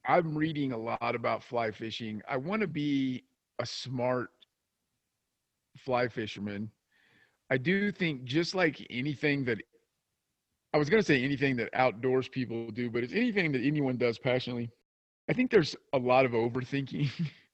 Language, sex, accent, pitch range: English, male, American, 110-140 Hz